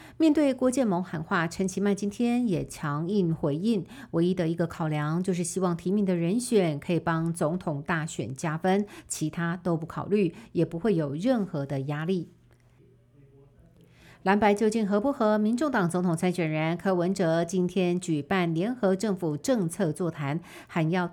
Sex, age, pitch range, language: female, 50-69, 160-205 Hz, Chinese